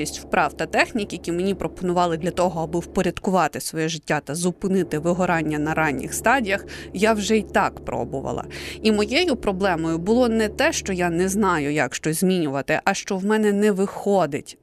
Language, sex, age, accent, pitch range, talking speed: Ukrainian, female, 30-49, native, 170-230 Hz, 175 wpm